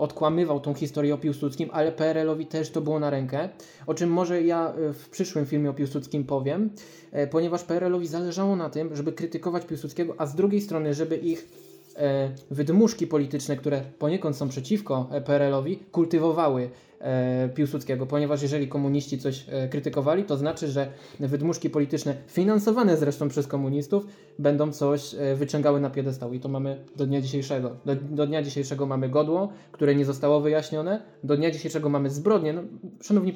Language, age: Polish, 20-39